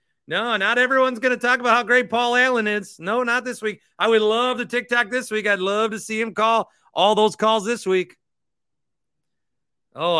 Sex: male